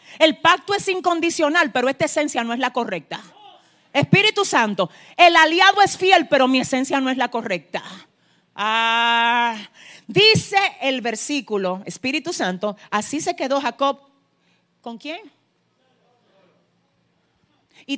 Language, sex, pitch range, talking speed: Spanish, female, 220-310 Hz, 125 wpm